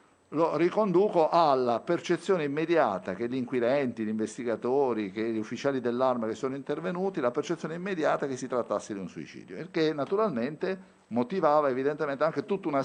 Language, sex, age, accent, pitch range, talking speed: Italian, male, 50-69, native, 115-170 Hz, 160 wpm